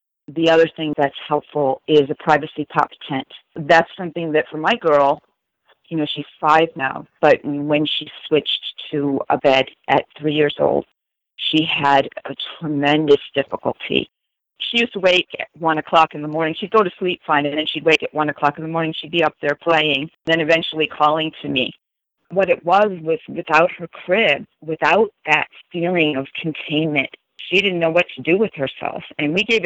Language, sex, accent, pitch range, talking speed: English, female, American, 145-170 Hz, 190 wpm